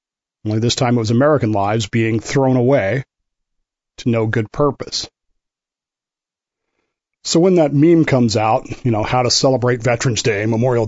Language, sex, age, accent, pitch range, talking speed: English, male, 40-59, American, 115-135 Hz, 155 wpm